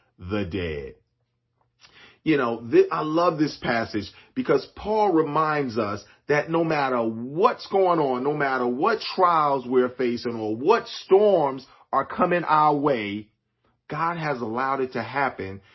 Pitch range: 110-150 Hz